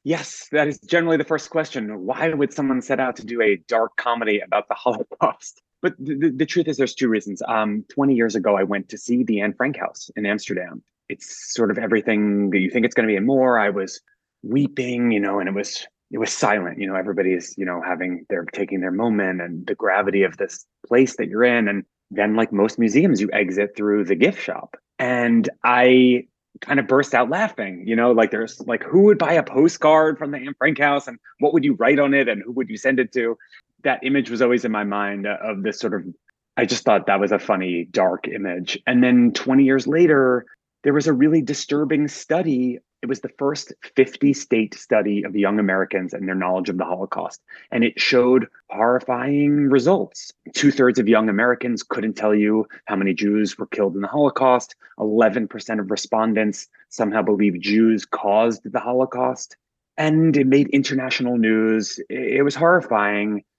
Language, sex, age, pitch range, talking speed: English, male, 30-49, 105-140 Hz, 205 wpm